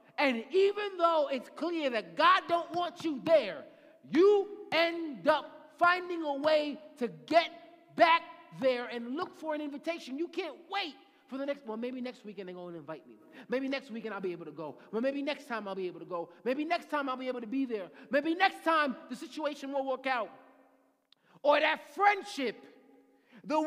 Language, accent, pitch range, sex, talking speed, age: English, American, 225-310 Hz, male, 200 wpm, 30-49